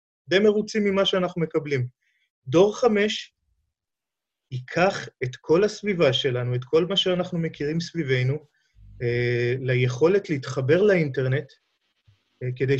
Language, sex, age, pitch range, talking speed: Hebrew, male, 30-49, 135-175 Hz, 105 wpm